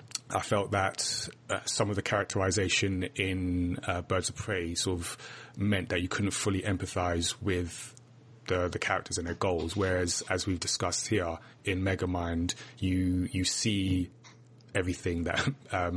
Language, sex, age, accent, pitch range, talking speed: English, male, 30-49, British, 90-105 Hz, 155 wpm